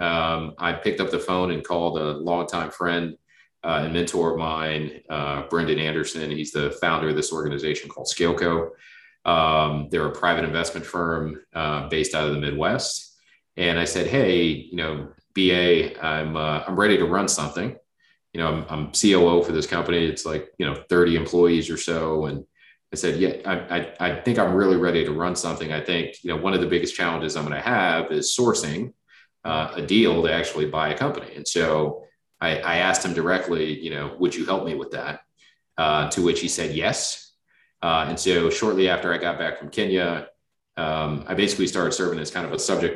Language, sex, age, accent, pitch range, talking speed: English, male, 30-49, American, 75-85 Hz, 205 wpm